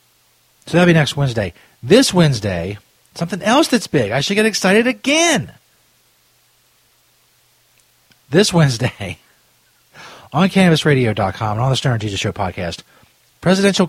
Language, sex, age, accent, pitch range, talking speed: English, male, 40-59, American, 110-145 Hz, 120 wpm